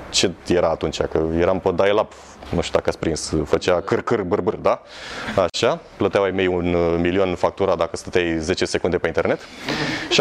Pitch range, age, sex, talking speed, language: 90-145 Hz, 30-49, male, 180 wpm, Romanian